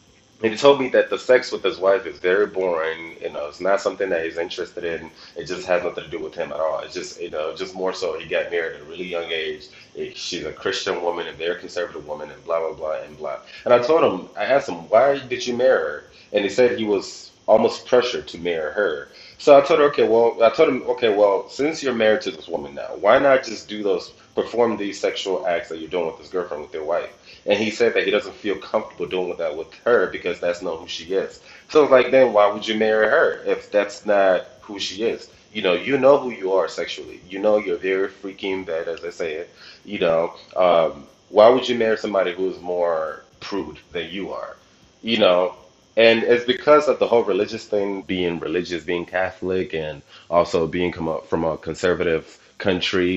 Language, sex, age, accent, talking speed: English, male, 30-49, American, 230 wpm